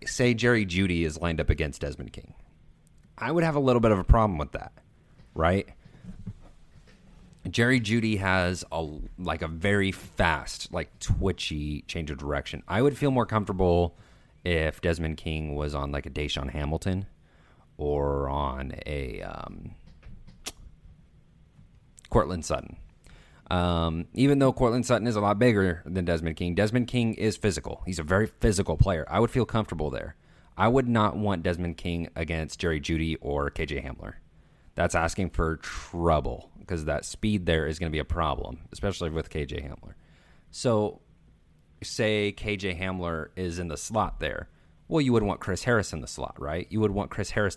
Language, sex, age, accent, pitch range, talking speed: English, male, 30-49, American, 80-105 Hz, 170 wpm